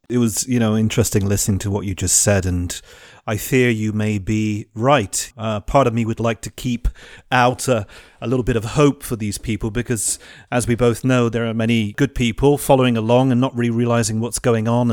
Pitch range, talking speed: 105-125 Hz, 220 wpm